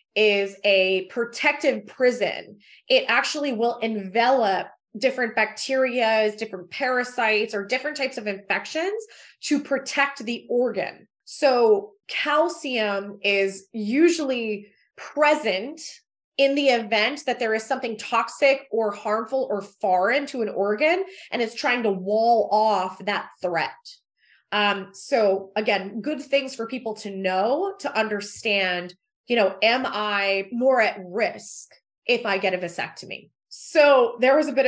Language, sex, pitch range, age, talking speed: English, female, 205-270 Hz, 20-39, 135 wpm